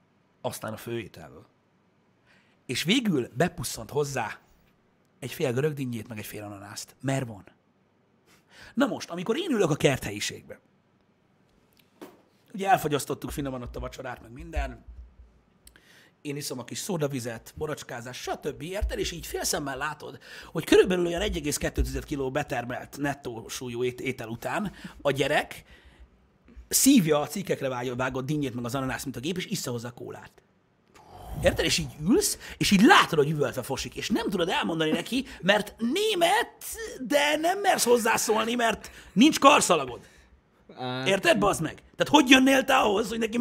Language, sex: Hungarian, male